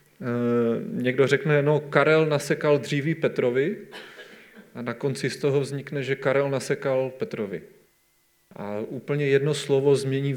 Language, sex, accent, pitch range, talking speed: Czech, male, native, 125-150 Hz, 125 wpm